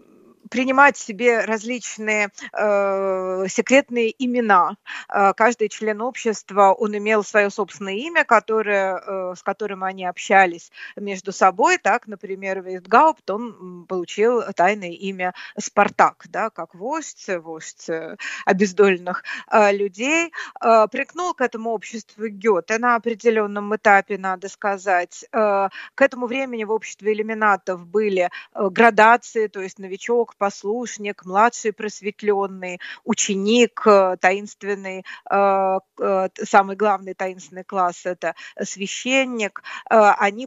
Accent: native